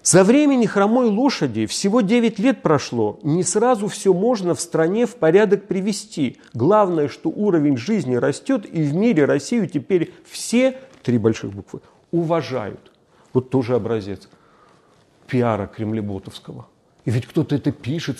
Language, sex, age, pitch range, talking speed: Russian, male, 40-59, 130-175 Hz, 140 wpm